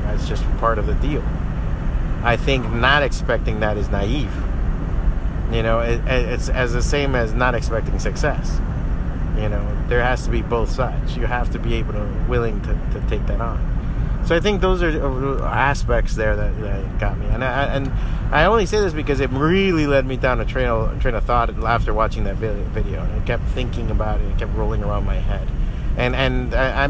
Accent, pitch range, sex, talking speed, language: American, 110-140 Hz, male, 200 wpm, English